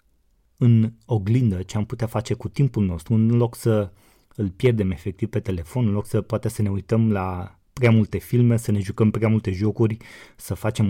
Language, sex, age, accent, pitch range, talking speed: Romanian, male, 30-49, native, 100-115 Hz, 200 wpm